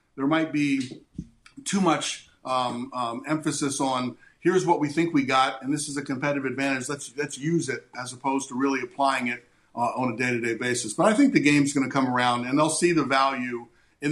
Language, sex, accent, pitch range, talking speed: English, male, American, 135-155 Hz, 215 wpm